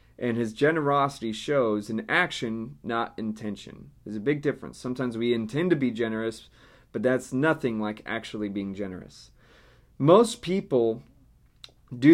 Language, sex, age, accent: English, male, 30-49, American